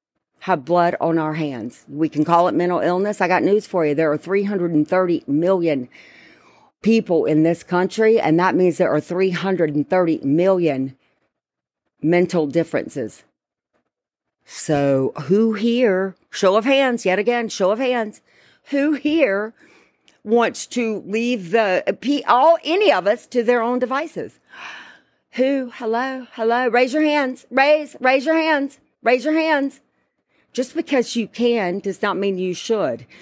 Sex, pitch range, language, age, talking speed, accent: female, 175-245 Hz, English, 50-69, 145 wpm, American